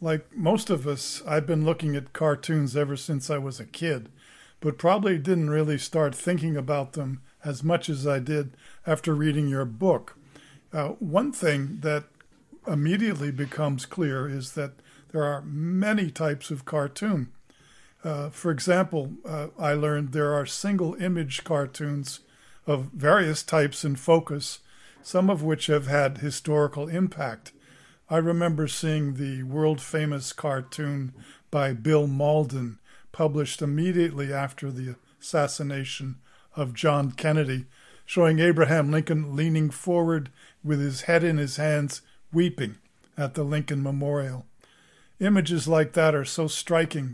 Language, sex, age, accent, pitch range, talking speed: English, male, 50-69, American, 140-160 Hz, 140 wpm